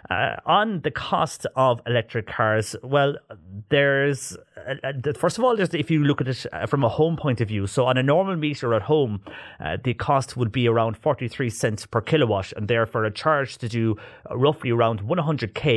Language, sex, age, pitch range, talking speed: English, male, 30-49, 110-140 Hz, 185 wpm